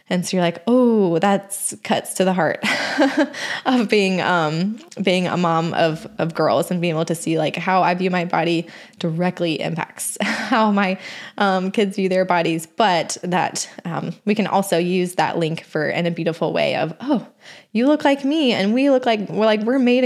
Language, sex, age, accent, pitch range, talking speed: English, female, 20-39, American, 175-230 Hz, 200 wpm